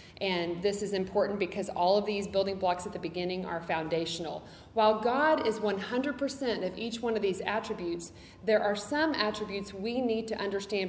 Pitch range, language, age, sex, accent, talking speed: 180-220 Hz, English, 40-59, female, American, 180 wpm